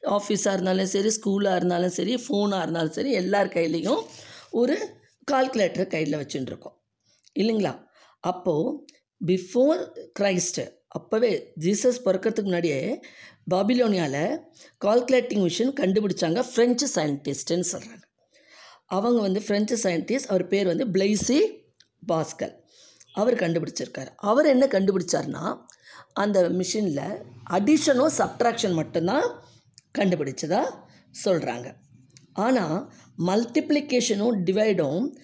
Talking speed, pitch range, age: 95 wpm, 180-250 Hz, 20-39